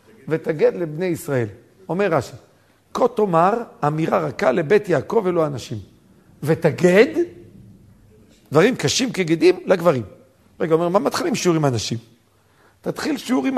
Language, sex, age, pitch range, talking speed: Hebrew, male, 50-69, 140-200 Hz, 130 wpm